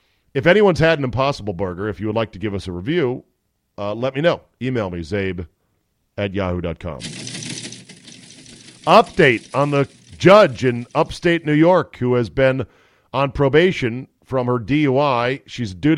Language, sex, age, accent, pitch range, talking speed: English, male, 40-59, American, 105-145 Hz, 160 wpm